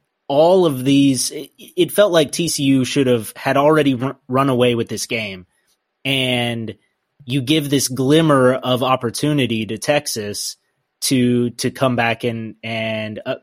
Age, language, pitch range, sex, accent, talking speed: 20-39, English, 120-140 Hz, male, American, 140 wpm